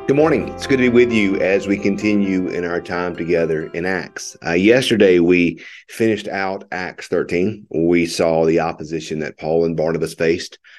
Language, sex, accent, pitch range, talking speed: English, male, American, 85-120 Hz, 185 wpm